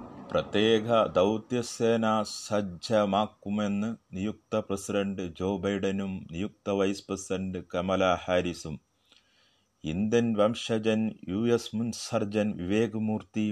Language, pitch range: Malayalam, 95-110 Hz